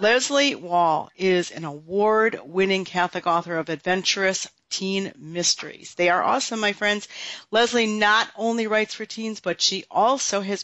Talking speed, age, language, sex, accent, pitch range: 145 wpm, 50-69, English, female, American, 185-225 Hz